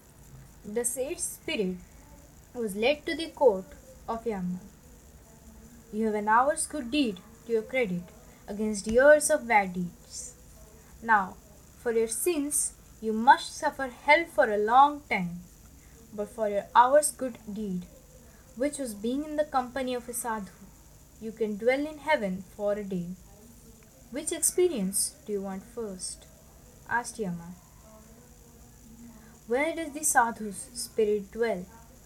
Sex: female